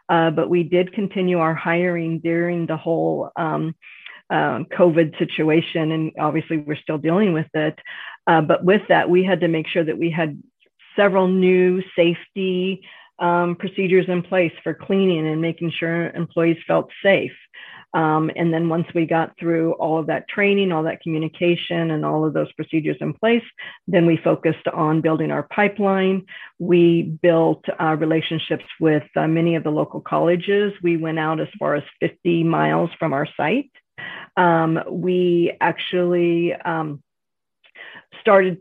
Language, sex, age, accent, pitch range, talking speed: English, female, 40-59, American, 165-185 Hz, 160 wpm